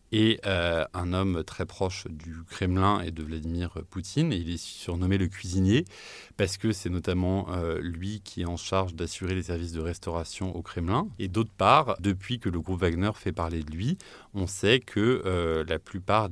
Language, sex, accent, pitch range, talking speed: French, male, French, 85-100 Hz, 195 wpm